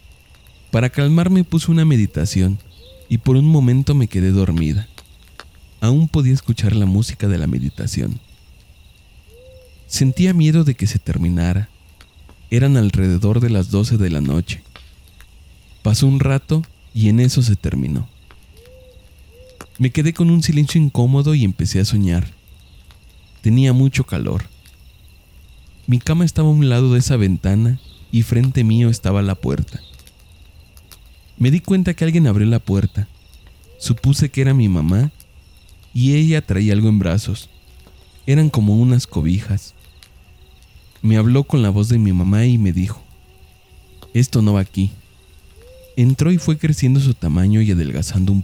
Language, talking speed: Spanish, 145 wpm